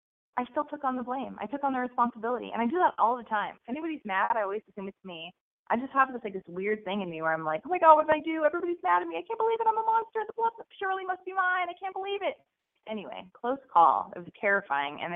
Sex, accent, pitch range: female, American, 180-255 Hz